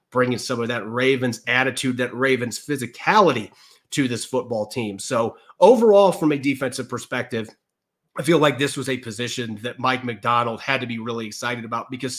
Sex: male